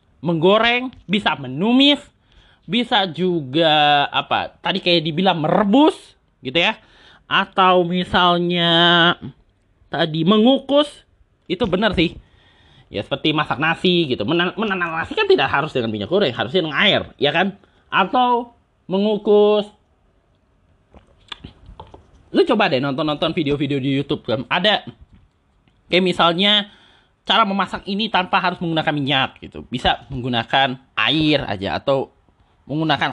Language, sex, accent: Indonesian, male, native